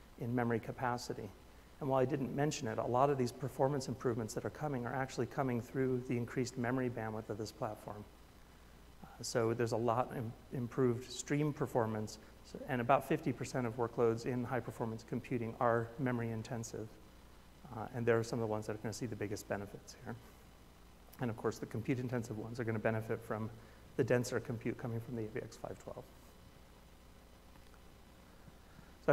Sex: male